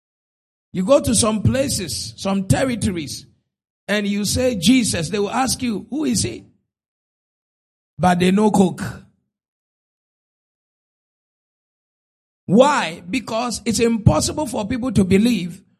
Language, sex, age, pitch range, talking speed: English, male, 50-69, 190-260 Hz, 115 wpm